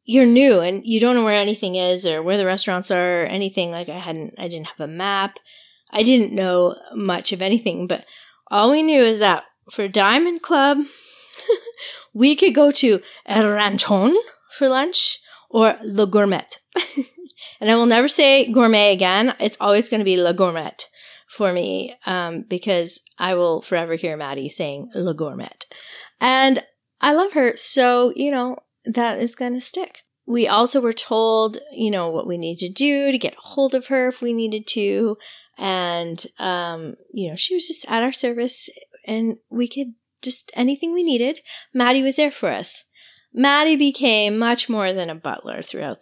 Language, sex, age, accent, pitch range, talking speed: English, female, 20-39, American, 190-260 Hz, 180 wpm